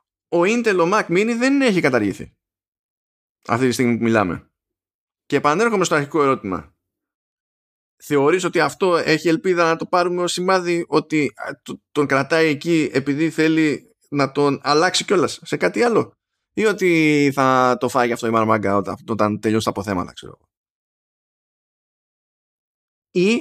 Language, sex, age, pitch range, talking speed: Greek, male, 20-39, 115-170 Hz, 140 wpm